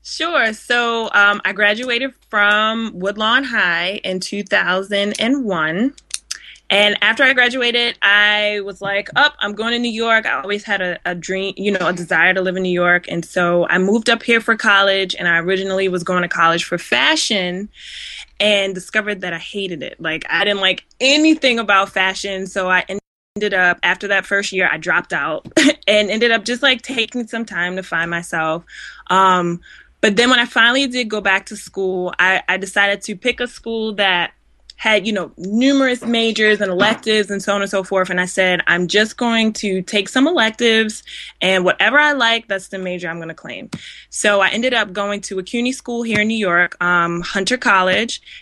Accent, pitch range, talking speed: American, 185-225 Hz, 200 wpm